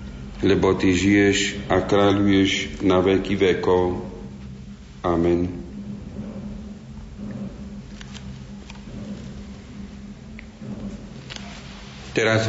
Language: Slovak